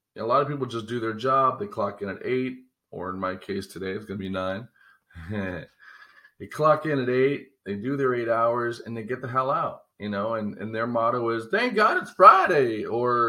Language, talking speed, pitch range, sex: English, 230 wpm, 105-130 Hz, male